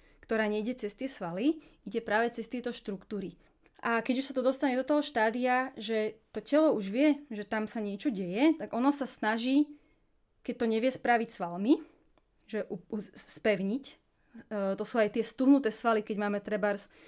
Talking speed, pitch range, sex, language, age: 170 wpm, 210-265 Hz, female, Slovak, 20-39